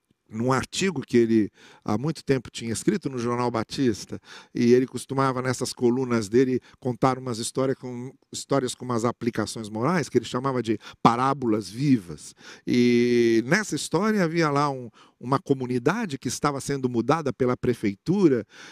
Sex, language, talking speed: male, German, 145 wpm